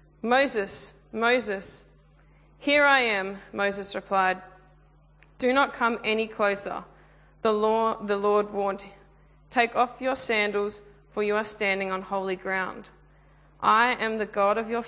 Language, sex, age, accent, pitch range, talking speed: English, female, 20-39, Australian, 195-220 Hz, 135 wpm